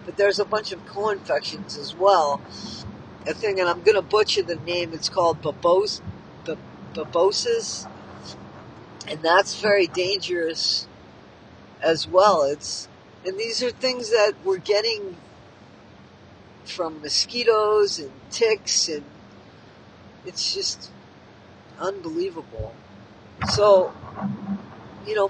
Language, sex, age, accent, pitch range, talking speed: English, female, 50-69, American, 160-205 Hz, 110 wpm